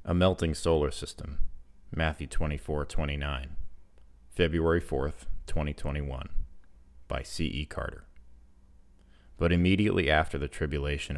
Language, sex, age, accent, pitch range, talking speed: English, male, 30-49, American, 70-80 Hz, 90 wpm